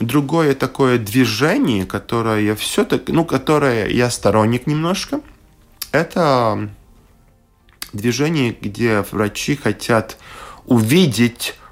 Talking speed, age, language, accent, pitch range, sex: 85 wpm, 20-39, Russian, native, 100-135 Hz, male